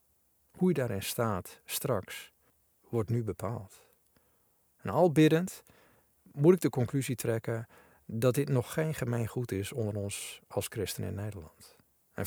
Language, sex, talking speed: Dutch, male, 145 wpm